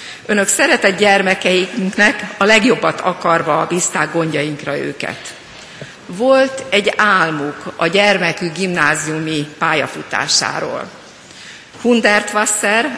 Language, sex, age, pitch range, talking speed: Hungarian, female, 50-69, 165-205 Hz, 80 wpm